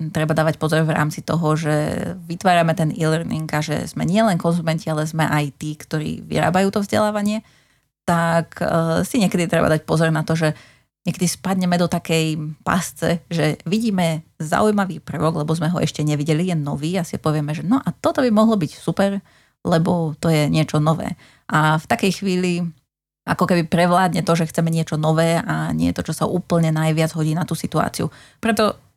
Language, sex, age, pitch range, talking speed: Slovak, female, 30-49, 155-175 Hz, 185 wpm